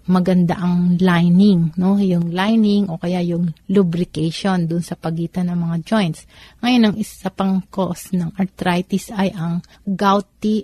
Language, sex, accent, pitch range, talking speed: Filipino, female, native, 180-205 Hz, 145 wpm